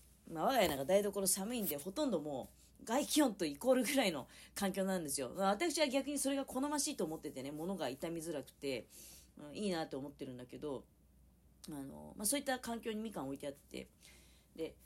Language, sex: Japanese, female